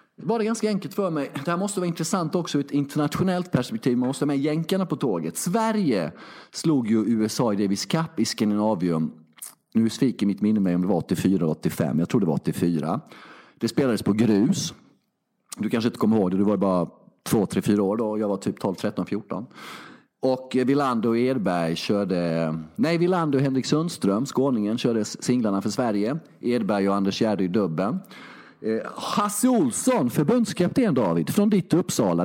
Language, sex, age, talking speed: Swedish, male, 30-49, 175 wpm